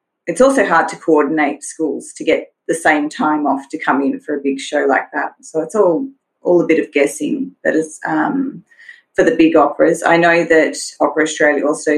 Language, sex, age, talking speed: English, female, 30-49, 210 wpm